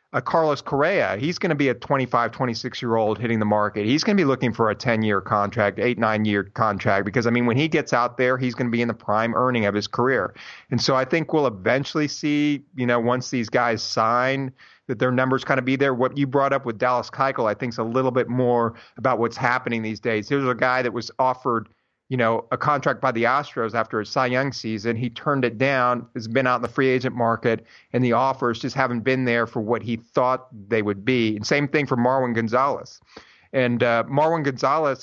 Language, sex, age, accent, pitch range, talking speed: English, male, 30-49, American, 115-130 Hz, 235 wpm